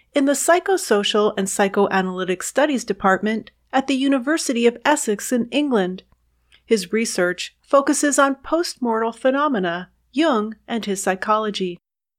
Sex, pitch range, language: female, 195-280 Hz, English